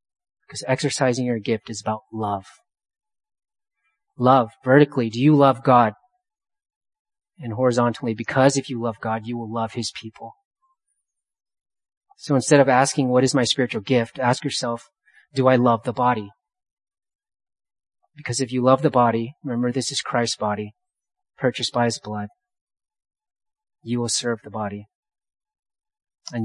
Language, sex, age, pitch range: English, male, 30-49, 115-150 Hz